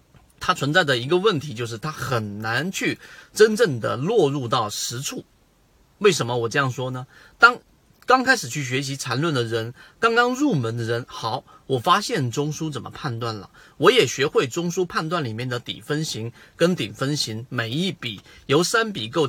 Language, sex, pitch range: Chinese, male, 120-170 Hz